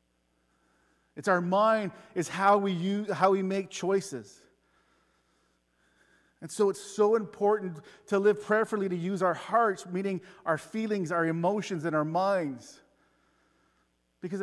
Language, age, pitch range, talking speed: English, 40-59, 135-180 Hz, 135 wpm